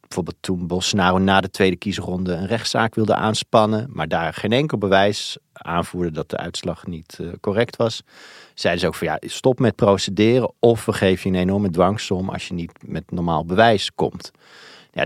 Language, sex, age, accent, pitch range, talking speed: Dutch, male, 50-69, Dutch, 90-110 Hz, 185 wpm